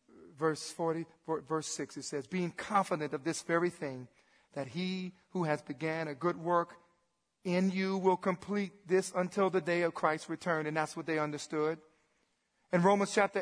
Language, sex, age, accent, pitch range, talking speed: English, male, 40-59, American, 195-295 Hz, 175 wpm